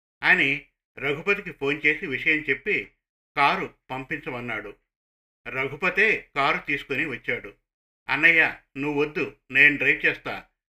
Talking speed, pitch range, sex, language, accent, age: 95 wpm, 130-155 Hz, male, Telugu, native, 50-69